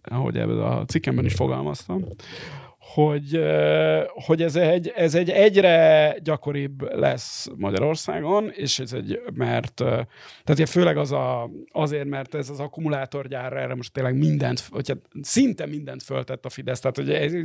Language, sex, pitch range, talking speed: Hungarian, male, 140-170 Hz, 140 wpm